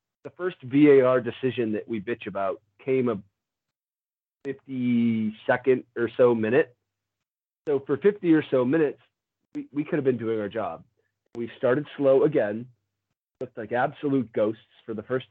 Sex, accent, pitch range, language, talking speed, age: male, American, 115-140 Hz, English, 155 wpm, 30-49